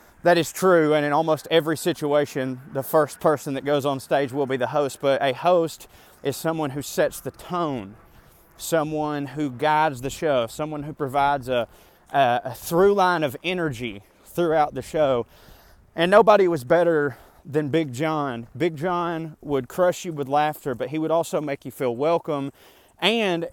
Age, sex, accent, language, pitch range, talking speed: 30-49, male, American, English, 135-170 Hz, 175 wpm